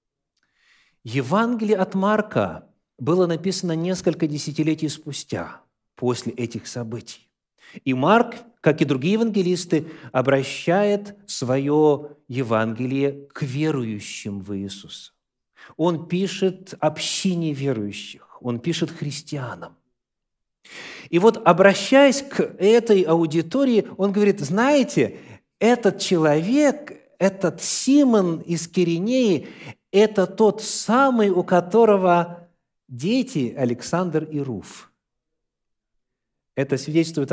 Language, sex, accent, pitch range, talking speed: Russian, male, native, 145-205 Hz, 90 wpm